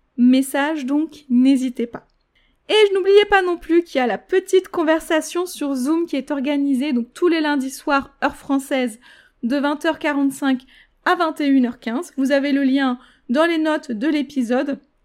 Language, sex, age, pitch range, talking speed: French, female, 20-39, 255-300 Hz, 165 wpm